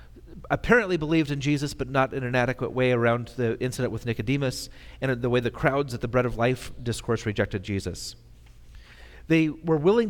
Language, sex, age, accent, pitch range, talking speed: English, male, 40-59, American, 110-145 Hz, 185 wpm